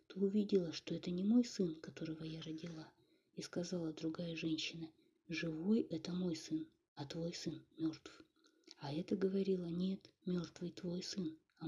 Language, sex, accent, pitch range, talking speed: Russian, female, native, 160-185 Hz, 155 wpm